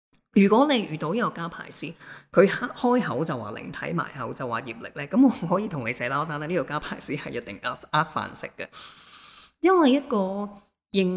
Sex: female